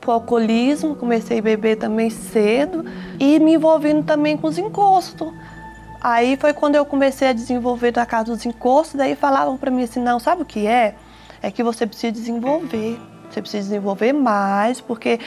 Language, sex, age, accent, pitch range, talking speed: Portuguese, female, 20-39, Brazilian, 225-275 Hz, 175 wpm